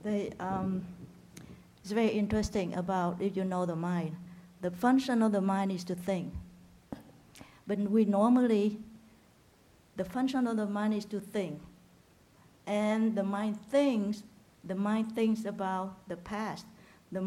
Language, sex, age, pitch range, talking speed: English, female, 60-79, 195-240 Hz, 140 wpm